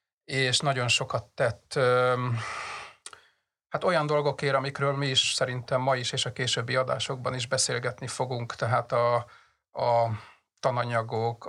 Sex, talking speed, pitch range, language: male, 125 wpm, 120-135 Hz, Hungarian